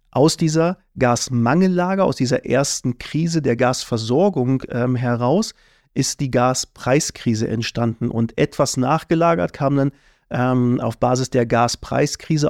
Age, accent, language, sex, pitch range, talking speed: 40-59, German, German, male, 120-150 Hz, 120 wpm